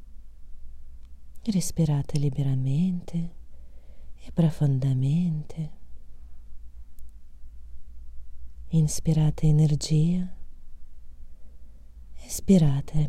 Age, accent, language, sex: 30-49, native, Italian, female